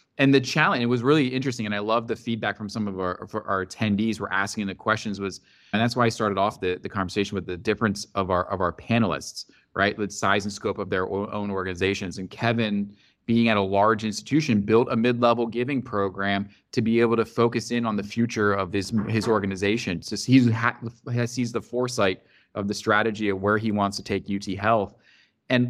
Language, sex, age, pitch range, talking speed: English, male, 20-39, 100-120 Hz, 215 wpm